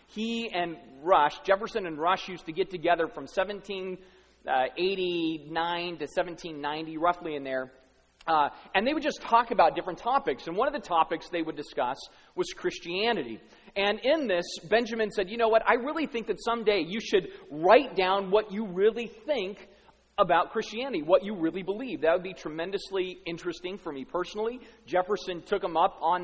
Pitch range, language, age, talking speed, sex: 165-215 Hz, English, 30-49, 175 wpm, male